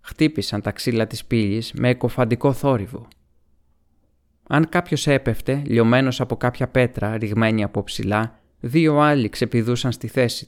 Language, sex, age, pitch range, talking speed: Greek, male, 20-39, 95-130 Hz, 130 wpm